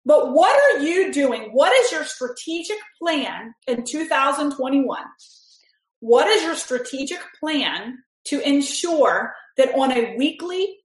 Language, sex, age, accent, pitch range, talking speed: English, female, 30-49, American, 260-340 Hz, 125 wpm